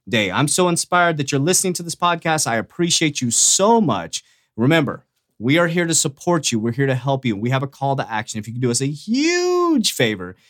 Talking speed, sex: 235 wpm, male